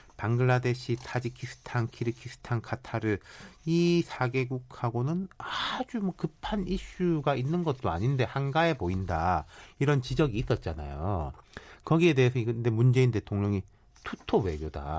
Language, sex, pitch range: Korean, male, 90-130 Hz